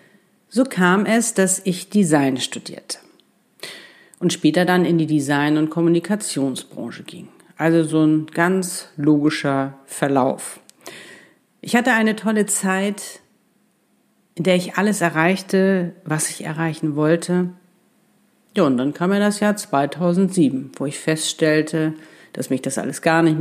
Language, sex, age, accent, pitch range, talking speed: German, female, 50-69, German, 155-190 Hz, 135 wpm